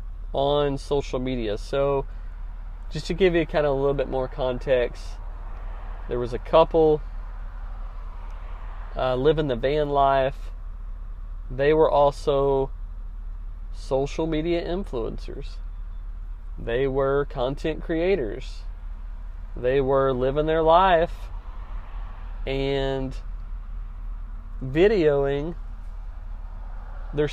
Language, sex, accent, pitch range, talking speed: English, male, American, 95-140 Hz, 90 wpm